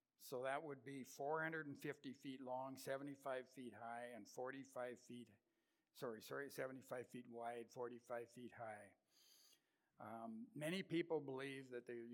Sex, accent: male, American